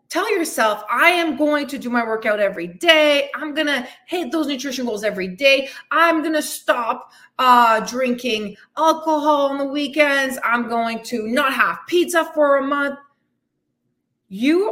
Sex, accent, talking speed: female, American, 160 wpm